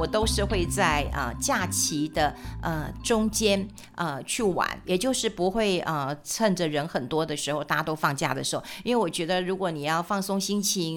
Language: Chinese